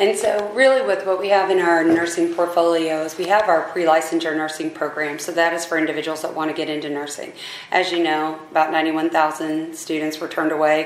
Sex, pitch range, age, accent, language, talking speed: female, 155-185 Hz, 30-49, American, English, 205 wpm